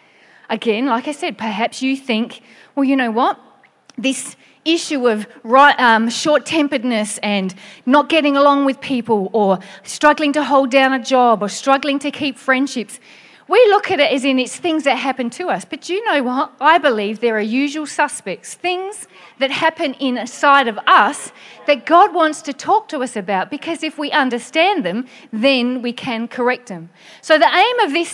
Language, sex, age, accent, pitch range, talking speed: English, female, 40-59, Australian, 240-320 Hz, 185 wpm